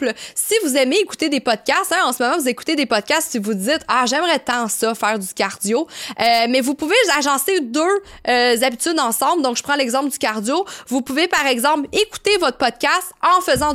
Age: 20-39